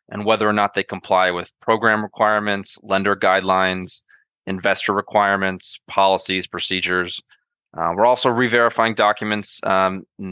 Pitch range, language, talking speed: 95-110 Hz, English, 120 wpm